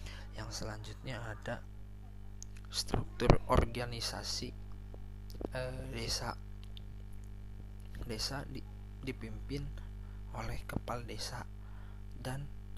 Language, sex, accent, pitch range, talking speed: Indonesian, male, native, 100-120 Hz, 55 wpm